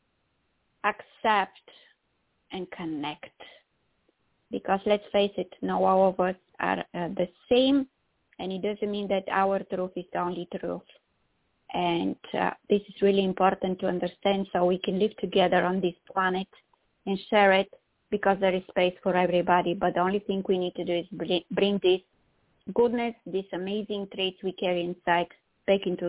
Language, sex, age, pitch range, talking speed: English, female, 20-39, 185-225 Hz, 165 wpm